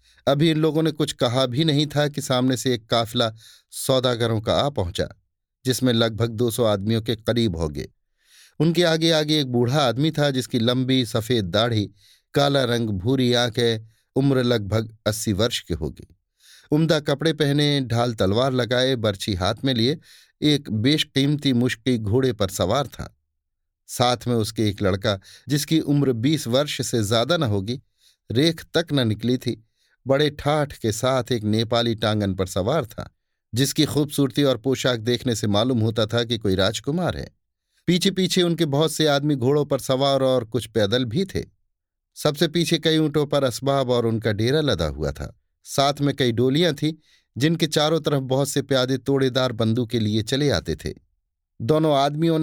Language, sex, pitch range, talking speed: Hindi, male, 110-145 Hz, 170 wpm